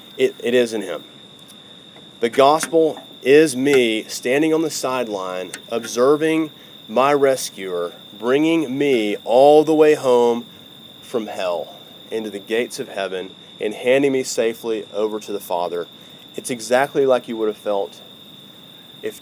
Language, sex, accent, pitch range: English, male, American, 110-150 Hz